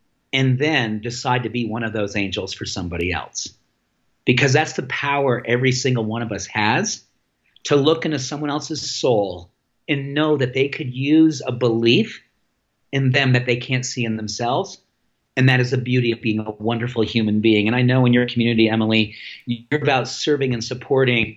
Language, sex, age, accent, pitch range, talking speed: English, male, 40-59, American, 115-135 Hz, 190 wpm